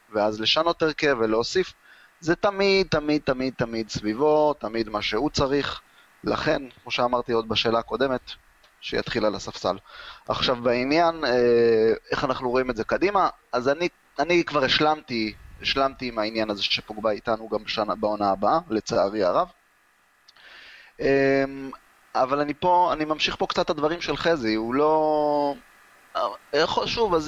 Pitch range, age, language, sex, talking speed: 115-150 Hz, 20-39, Hebrew, male, 140 wpm